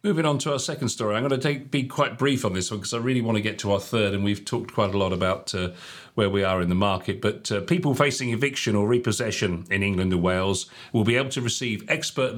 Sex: male